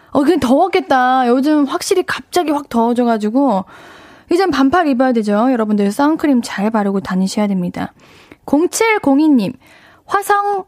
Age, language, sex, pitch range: 10-29, Korean, female, 225-310 Hz